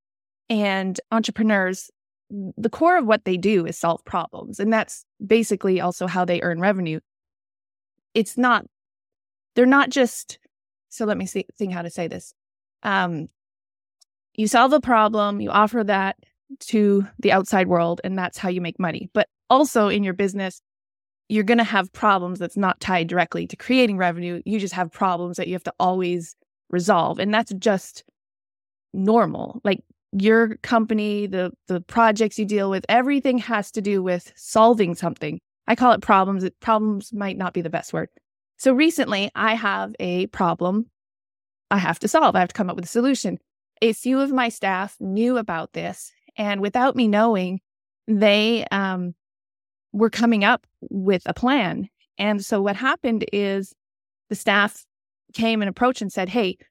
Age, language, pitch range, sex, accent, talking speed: 20-39, English, 180-225 Hz, female, American, 170 wpm